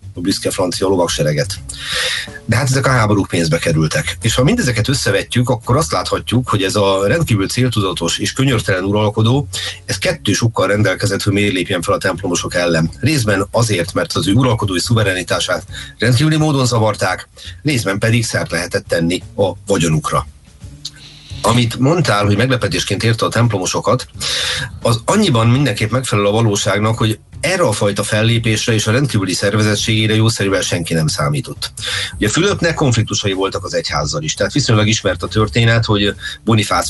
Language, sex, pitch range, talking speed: Hungarian, male, 95-120 Hz, 155 wpm